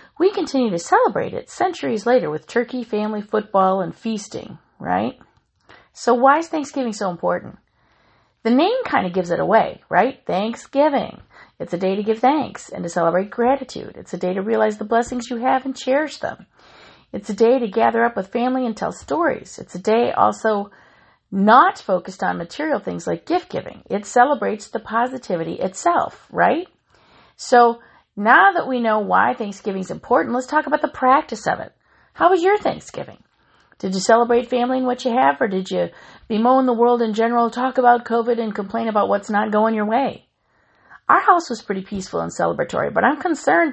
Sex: female